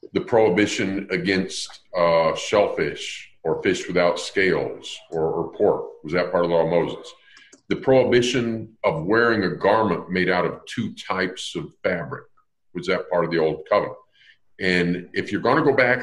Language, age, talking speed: English, 50-69, 175 wpm